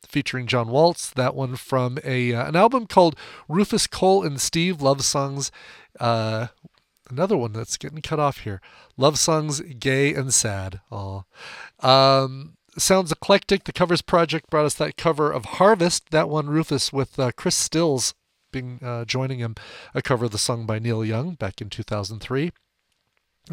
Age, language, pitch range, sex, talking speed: 40-59, English, 115-160 Hz, male, 165 wpm